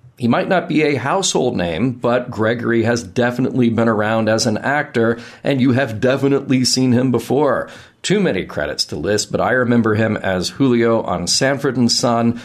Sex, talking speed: male, 185 wpm